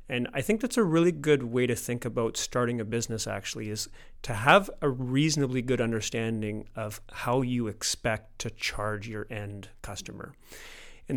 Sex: male